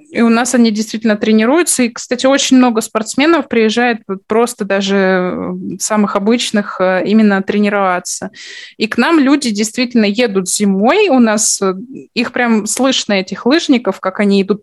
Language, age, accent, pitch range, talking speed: Russian, 20-39, native, 200-245 Hz, 150 wpm